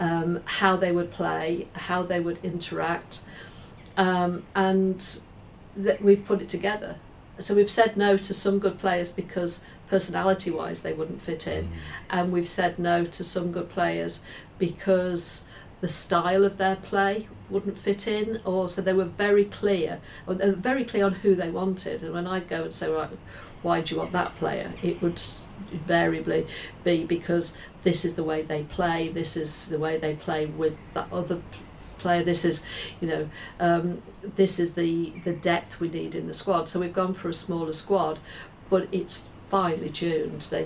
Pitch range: 160-190 Hz